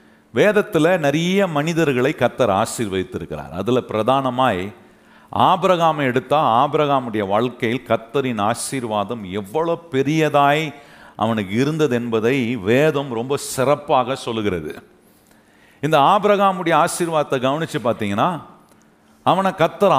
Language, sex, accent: Tamil, male, native